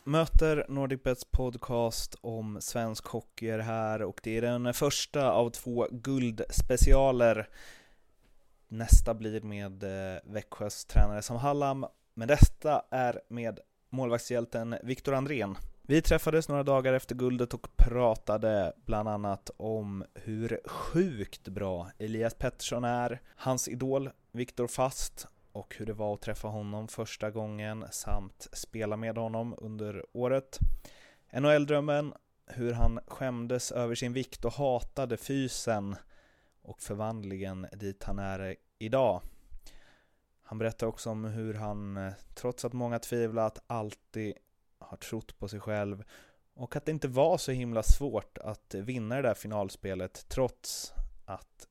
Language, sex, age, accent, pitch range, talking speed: Swedish, male, 30-49, native, 105-125 Hz, 130 wpm